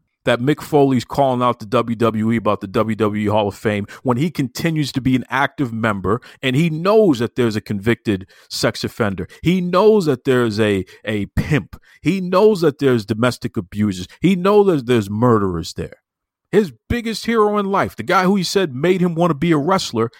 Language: English